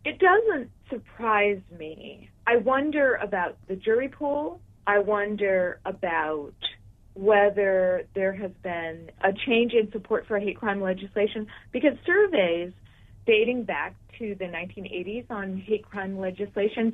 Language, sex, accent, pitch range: English, female, American, 180-230 Hz